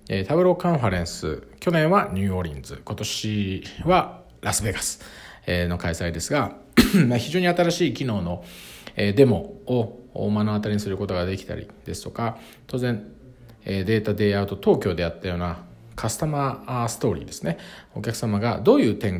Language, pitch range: Japanese, 100-160 Hz